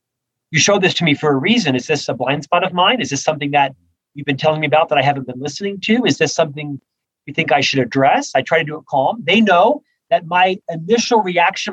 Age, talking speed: 40-59, 255 wpm